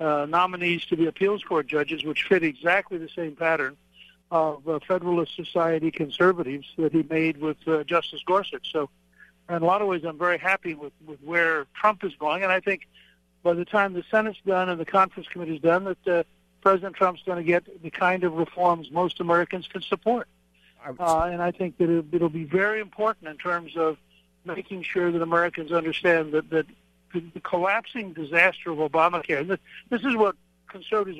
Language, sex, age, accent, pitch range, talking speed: English, male, 60-79, American, 160-190 Hz, 190 wpm